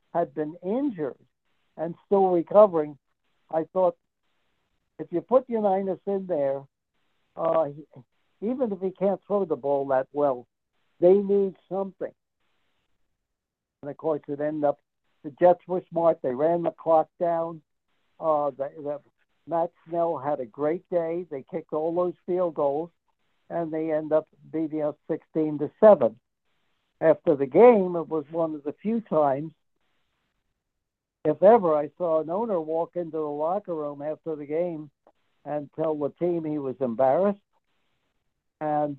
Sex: male